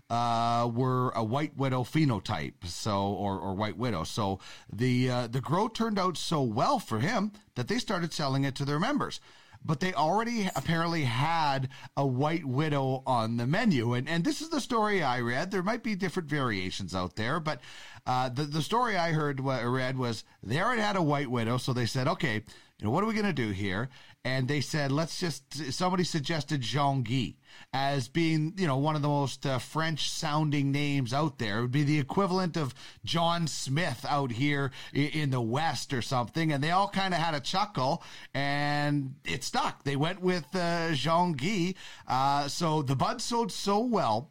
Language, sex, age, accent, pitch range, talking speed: English, male, 40-59, American, 125-170 Hz, 195 wpm